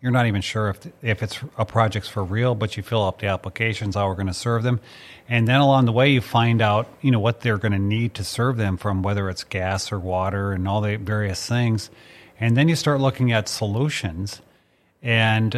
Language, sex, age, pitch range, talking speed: English, male, 40-59, 105-120 Hz, 235 wpm